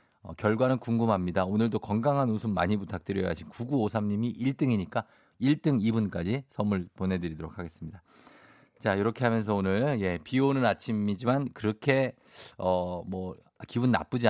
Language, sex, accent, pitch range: Korean, male, native, 105-150 Hz